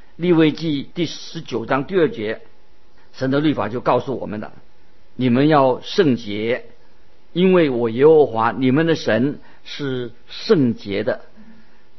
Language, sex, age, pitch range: Chinese, male, 50-69, 120-170 Hz